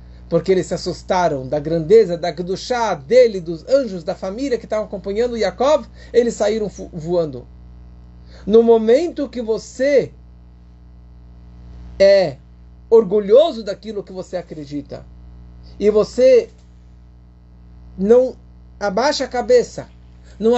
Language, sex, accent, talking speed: Portuguese, male, Brazilian, 115 wpm